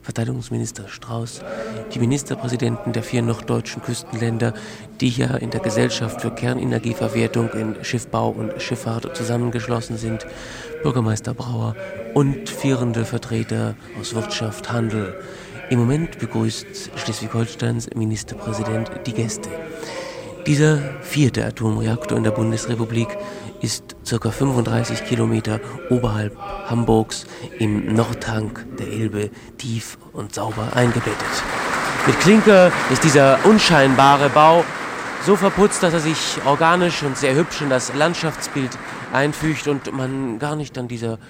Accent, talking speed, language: German, 120 wpm, German